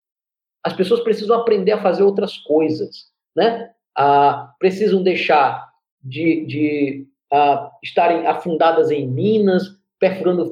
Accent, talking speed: Brazilian, 115 wpm